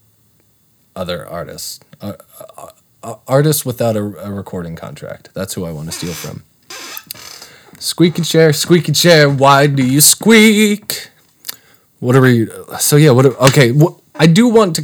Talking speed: 155 wpm